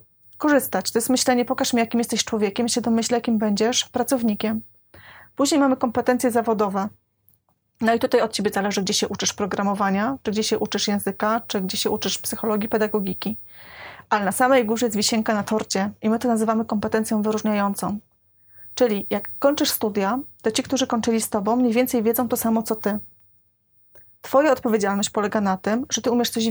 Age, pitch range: 30-49, 205-240 Hz